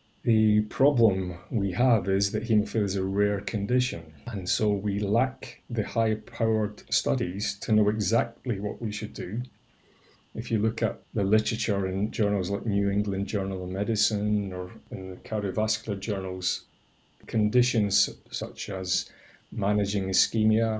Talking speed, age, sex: 140 wpm, 30-49, male